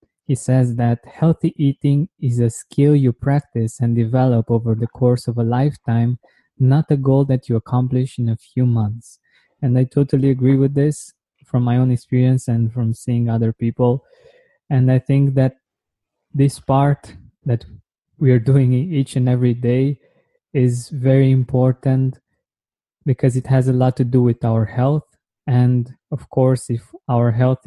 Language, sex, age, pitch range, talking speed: English, male, 20-39, 120-135 Hz, 165 wpm